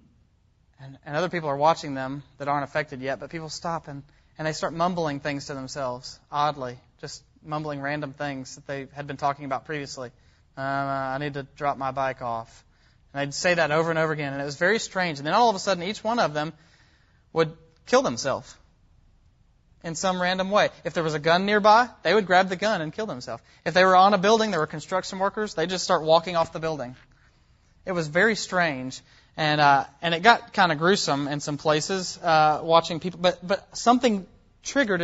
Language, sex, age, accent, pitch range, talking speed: English, male, 20-39, American, 150-195 Hz, 210 wpm